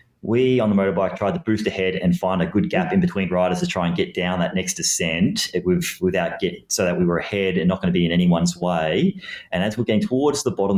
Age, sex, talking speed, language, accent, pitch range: 30-49, male, 250 wpm, English, Australian, 90-130 Hz